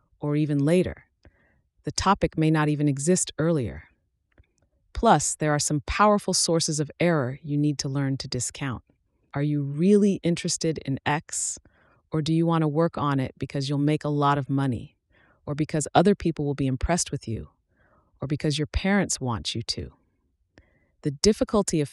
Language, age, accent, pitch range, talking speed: English, 30-49, American, 130-160 Hz, 175 wpm